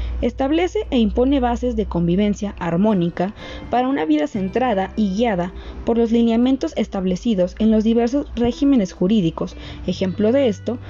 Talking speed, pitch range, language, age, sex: 140 wpm, 180-235 Hz, Spanish, 20-39, female